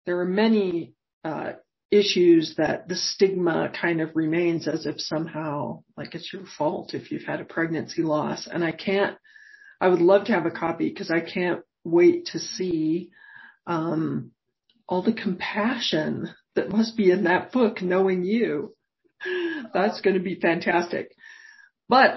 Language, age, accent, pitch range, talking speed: English, 40-59, American, 170-225 Hz, 155 wpm